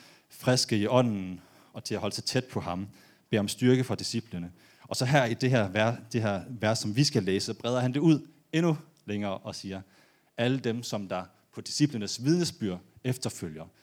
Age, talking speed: 30-49, 185 wpm